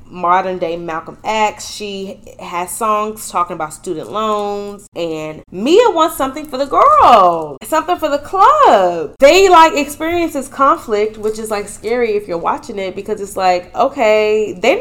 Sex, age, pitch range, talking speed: female, 20-39, 175-230 Hz, 160 wpm